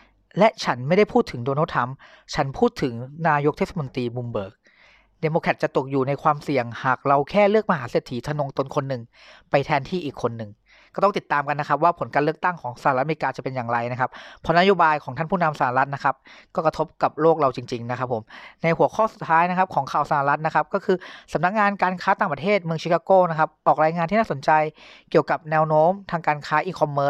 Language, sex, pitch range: English, female, 140-180 Hz